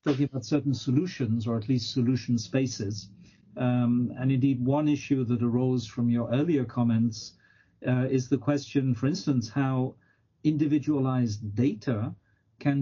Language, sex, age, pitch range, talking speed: English, male, 50-69, 115-140 Hz, 140 wpm